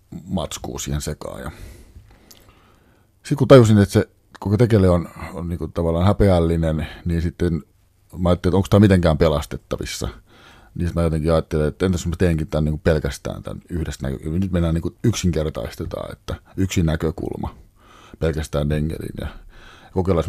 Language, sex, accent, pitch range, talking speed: Finnish, male, native, 75-95 Hz, 150 wpm